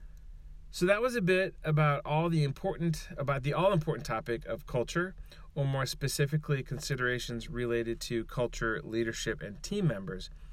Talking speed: 155 wpm